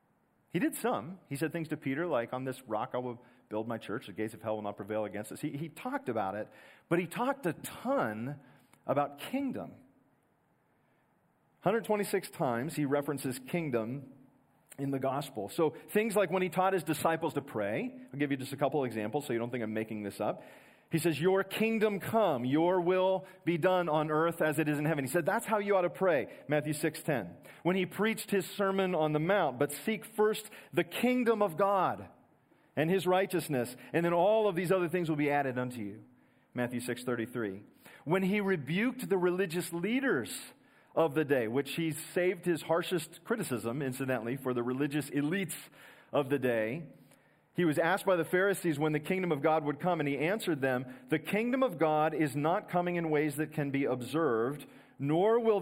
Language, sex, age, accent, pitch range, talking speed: English, male, 40-59, American, 135-185 Hz, 200 wpm